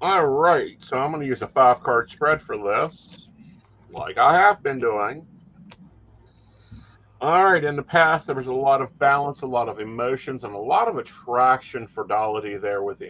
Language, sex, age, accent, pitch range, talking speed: English, male, 50-69, American, 120-155 Hz, 190 wpm